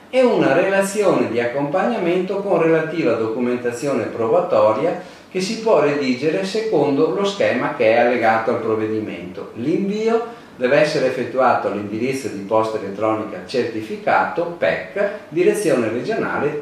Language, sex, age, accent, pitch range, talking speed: Italian, male, 50-69, native, 110-170 Hz, 120 wpm